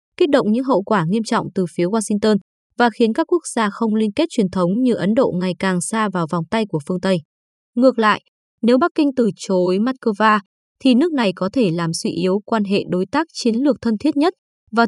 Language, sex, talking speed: Vietnamese, female, 235 wpm